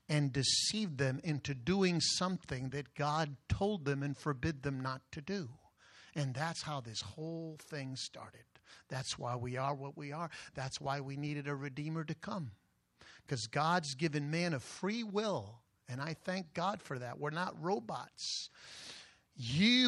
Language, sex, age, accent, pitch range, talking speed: English, male, 50-69, American, 135-195 Hz, 165 wpm